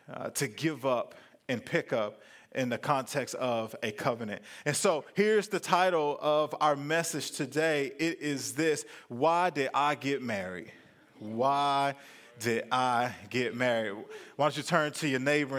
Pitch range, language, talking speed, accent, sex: 135-175 Hz, English, 160 wpm, American, male